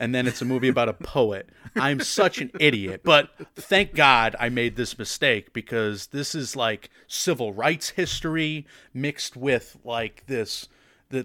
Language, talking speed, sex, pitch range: English, 165 wpm, male, 115-145 Hz